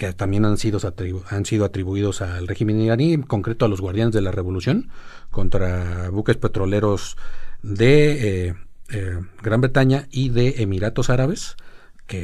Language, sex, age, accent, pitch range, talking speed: Spanish, male, 40-59, Mexican, 100-125 Hz, 155 wpm